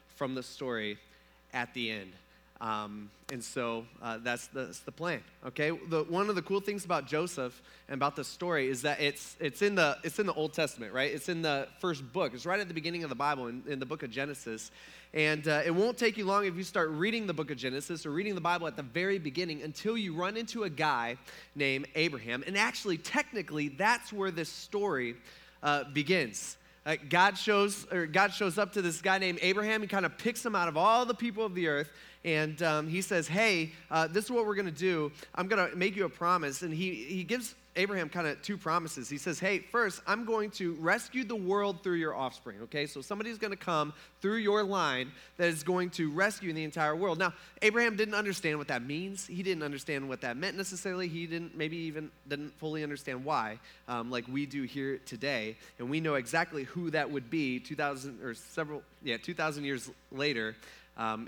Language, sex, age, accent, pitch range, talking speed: English, male, 20-39, American, 140-190 Hz, 220 wpm